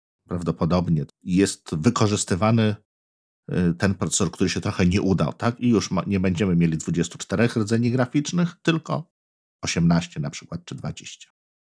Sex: male